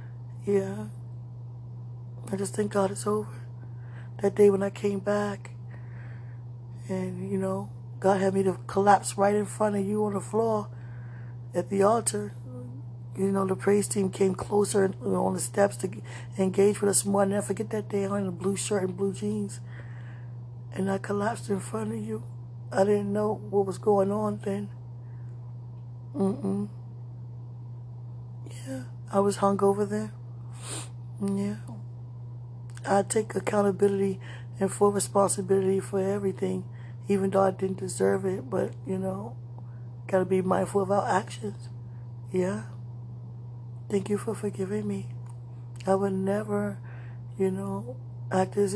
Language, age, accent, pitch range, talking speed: English, 20-39, American, 120-195 Hz, 150 wpm